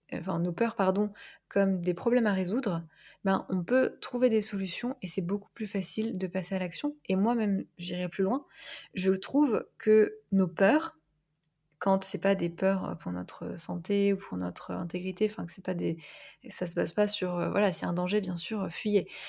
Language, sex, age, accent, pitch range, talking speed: French, female, 20-39, French, 180-215 Hz, 200 wpm